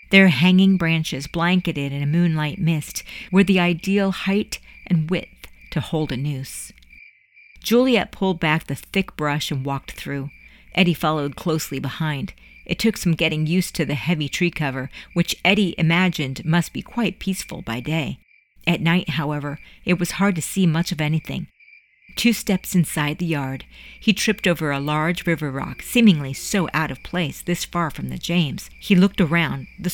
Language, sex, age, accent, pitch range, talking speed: English, female, 50-69, American, 150-180 Hz, 175 wpm